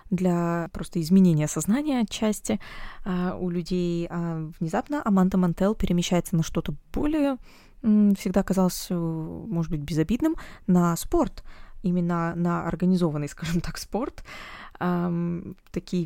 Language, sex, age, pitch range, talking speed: Russian, female, 20-39, 165-190 Hz, 105 wpm